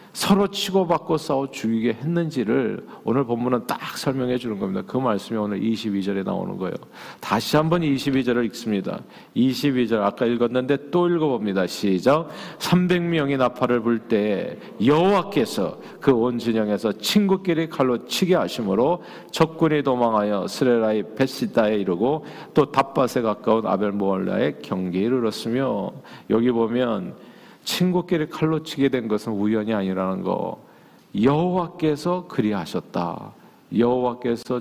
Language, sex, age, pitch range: Korean, male, 40-59, 115-160 Hz